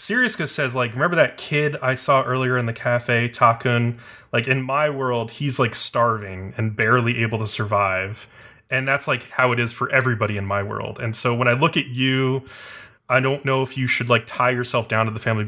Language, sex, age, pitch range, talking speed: English, male, 20-39, 115-130 Hz, 215 wpm